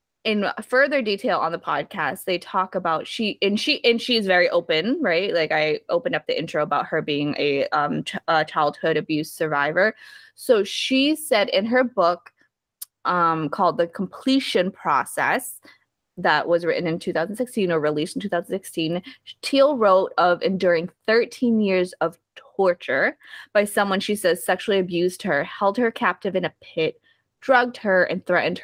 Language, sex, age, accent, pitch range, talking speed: English, female, 20-39, American, 170-240 Hz, 160 wpm